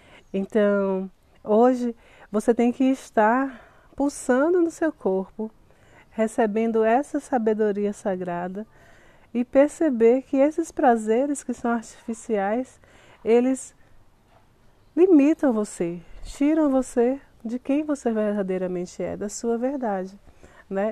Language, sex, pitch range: Portuguese, female, 195-255 Hz